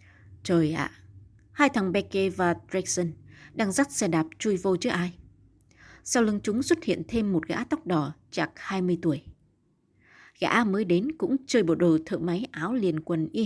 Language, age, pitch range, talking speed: Vietnamese, 20-39, 155-205 Hz, 185 wpm